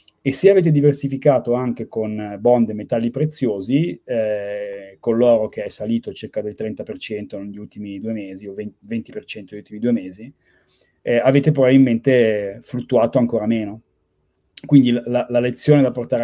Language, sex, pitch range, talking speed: Italian, male, 110-130 Hz, 150 wpm